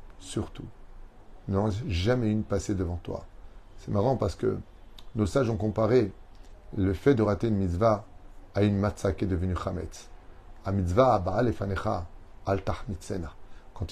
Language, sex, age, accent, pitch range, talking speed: French, male, 30-49, French, 95-110 Hz, 135 wpm